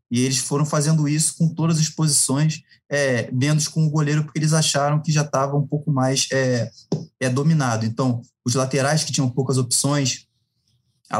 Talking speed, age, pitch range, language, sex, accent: 165 wpm, 20-39, 120-140 Hz, Portuguese, male, Brazilian